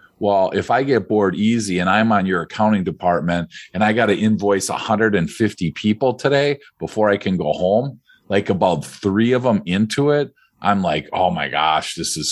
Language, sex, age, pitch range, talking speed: English, male, 40-59, 90-125 Hz, 190 wpm